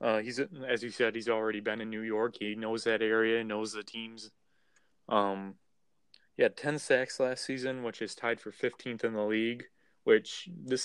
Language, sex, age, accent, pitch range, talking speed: English, male, 20-39, American, 105-125 Hz, 195 wpm